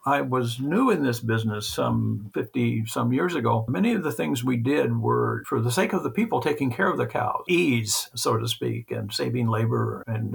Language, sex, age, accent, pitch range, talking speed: English, male, 60-79, American, 115-140 Hz, 215 wpm